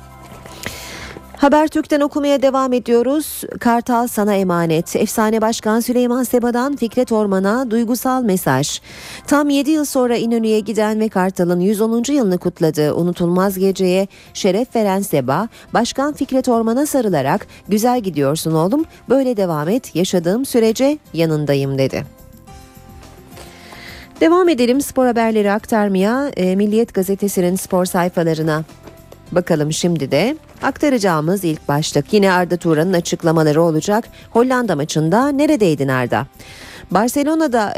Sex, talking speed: female, 110 wpm